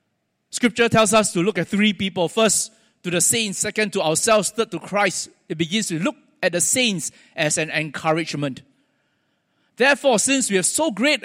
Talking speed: 180 wpm